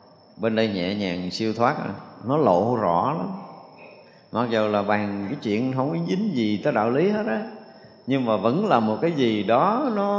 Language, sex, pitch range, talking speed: Vietnamese, male, 100-135 Hz, 200 wpm